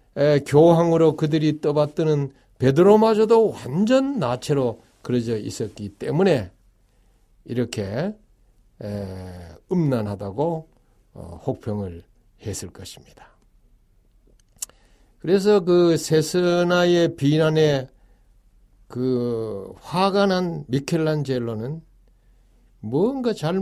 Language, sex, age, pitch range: Korean, male, 60-79, 105-155 Hz